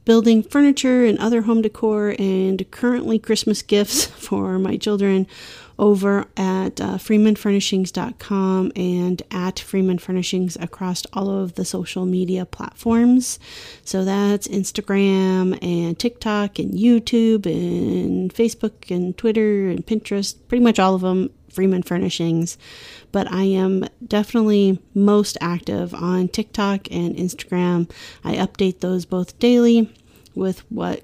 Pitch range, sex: 185-220 Hz, female